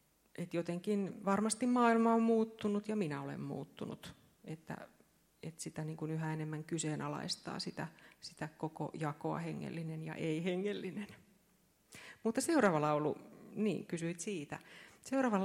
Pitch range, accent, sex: 155-205 Hz, native, female